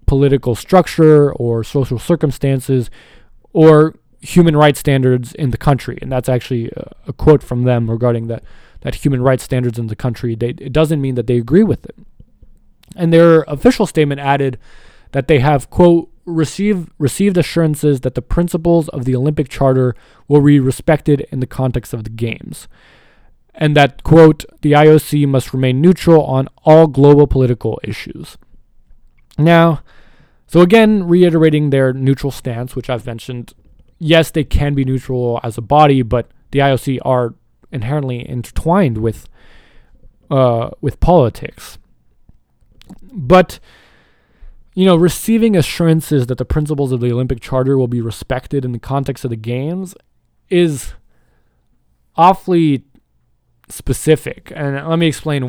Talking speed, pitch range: 145 wpm, 125-155 Hz